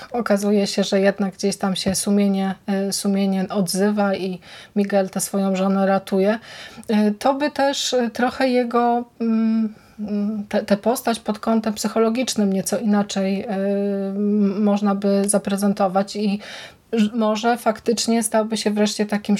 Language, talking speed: Polish, 120 wpm